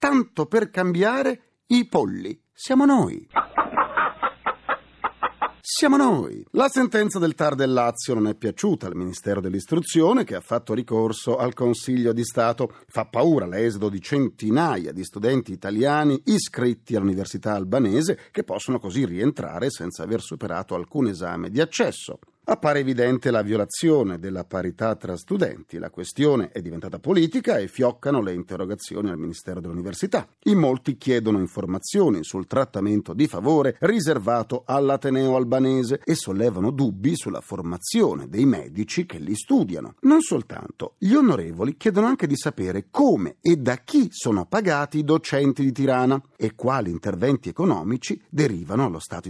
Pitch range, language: 105-165 Hz, Italian